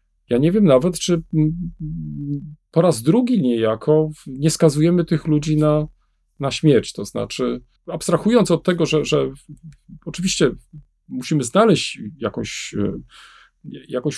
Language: Polish